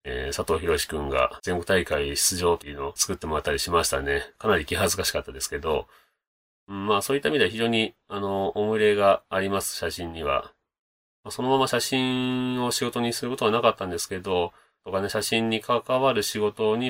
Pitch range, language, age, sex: 95-130 Hz, Japanese, 30-49, male